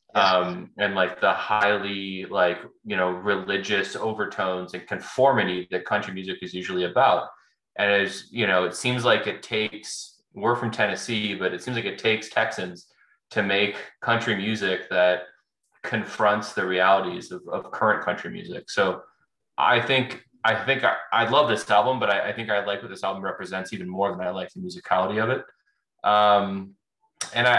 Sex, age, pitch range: male, 20-39, 95-120 Hz